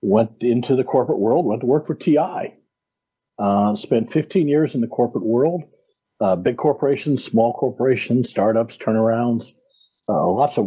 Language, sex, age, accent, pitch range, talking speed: English, male, 50-69, American, 110-140 Hz, 155 wpm